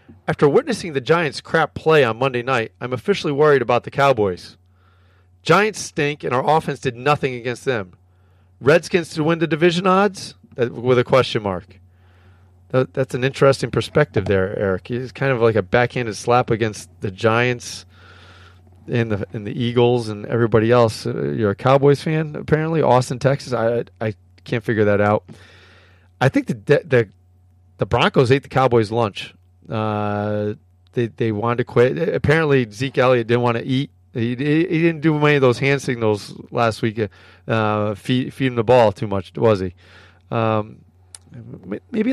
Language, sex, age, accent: English, male, 40-59, American